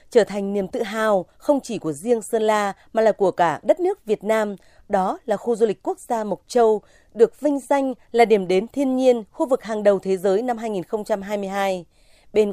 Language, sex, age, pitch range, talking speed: Vietnamese, female, 20-39, 175-230 Hz, 215 wpm